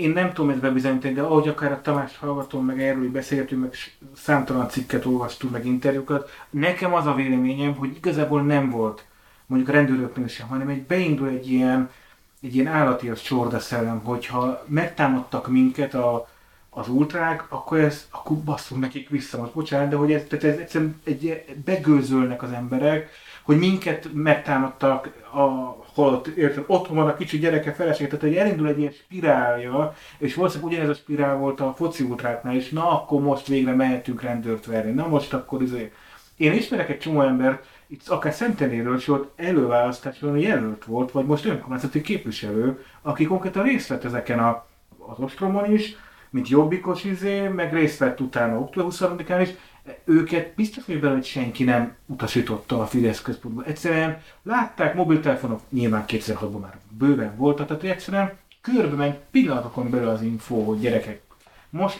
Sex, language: male, Hungarian